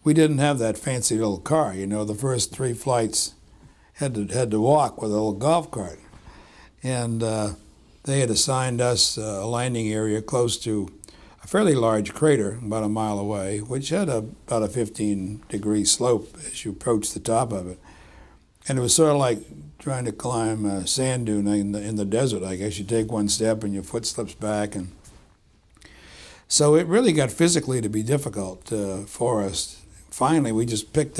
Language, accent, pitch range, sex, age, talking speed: English, American, 100-125 Hz, male, 60-79, 190 wpm